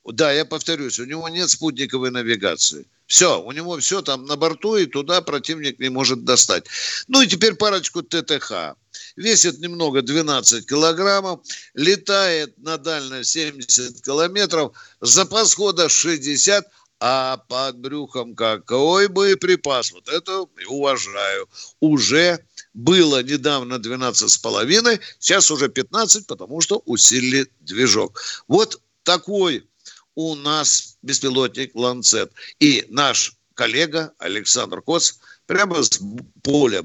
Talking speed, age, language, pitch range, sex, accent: 120 wpm, 50-69, Russian, 125-180 Hz, male, native